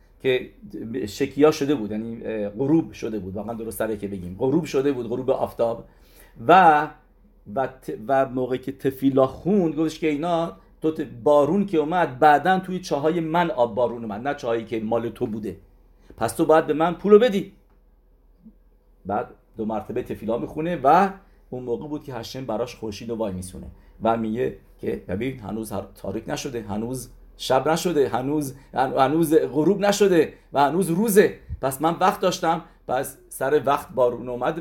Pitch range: 105-155 Hz